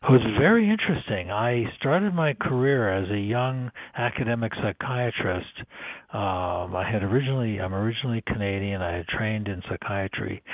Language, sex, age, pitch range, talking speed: English, male, 60-79, 100-125 Hz, 140 wpm